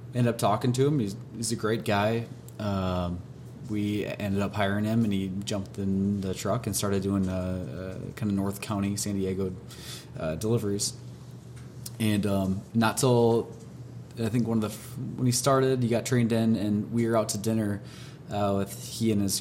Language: English